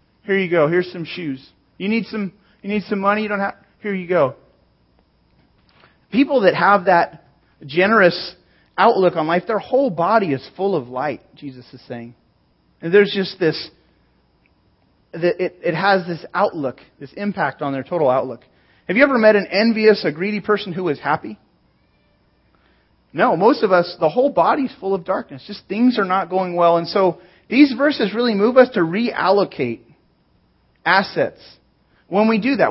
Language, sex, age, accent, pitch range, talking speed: English, male, 30-49, American, 155-210 Hz, 170 wpm